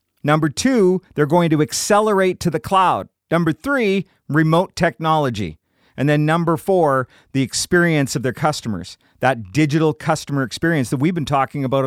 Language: English